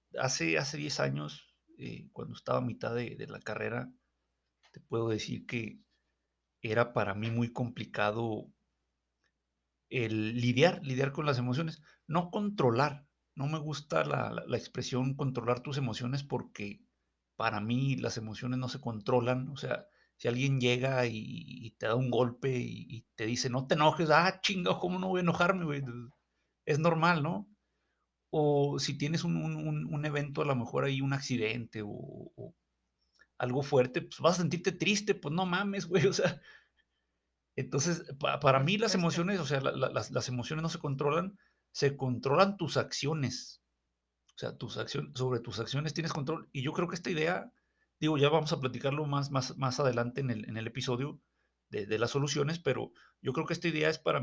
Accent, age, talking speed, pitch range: Mexican, 50-69, 180 wpm, 115-155 Hz